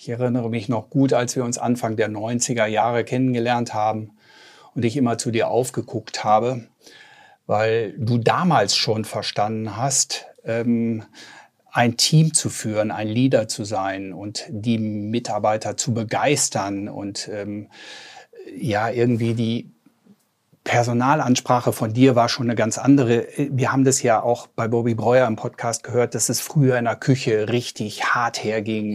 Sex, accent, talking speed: male, German, 150 wpm